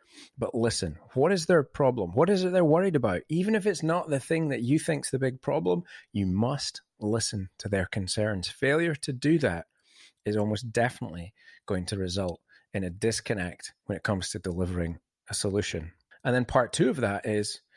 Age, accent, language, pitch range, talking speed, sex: 30-49, British, English, 100-140 Hz, 195 wpm, male